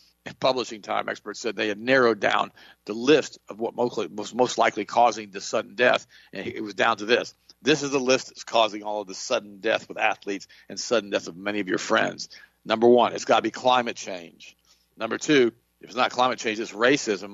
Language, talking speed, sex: English, 220 wpm, male